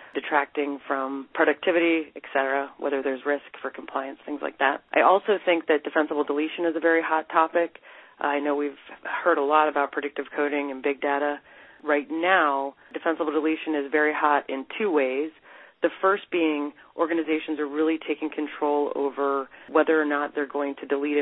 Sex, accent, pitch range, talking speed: female, American, 140-155 Hz, 175 wpm